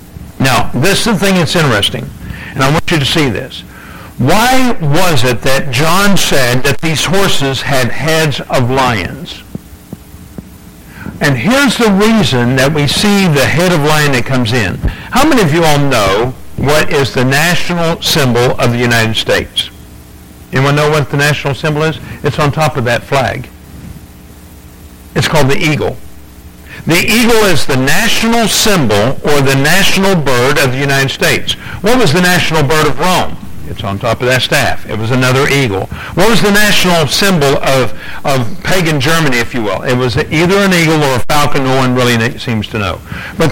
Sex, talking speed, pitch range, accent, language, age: male, 180 wpm, 125-165 Hz, American, English, 60-79